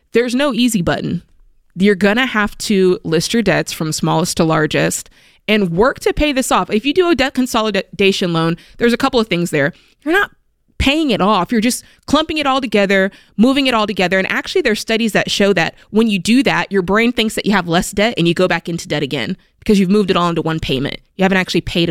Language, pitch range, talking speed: English, 175-245 Hz, 245 wpm